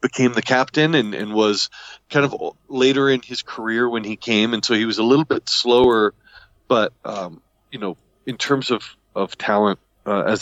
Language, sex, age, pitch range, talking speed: Swedish, male, 40-59, 95-115 Hz, 195 wpm